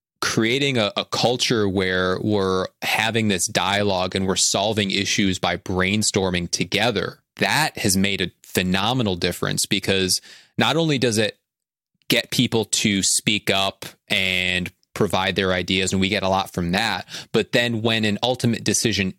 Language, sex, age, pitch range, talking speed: English, male, 30-49, 95-115 Hz, 155 wpm